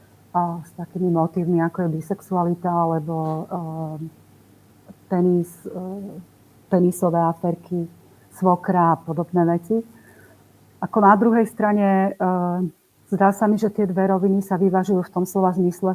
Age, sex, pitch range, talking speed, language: 40-59, female, 175-190 Hz, 130 wpm, Slovak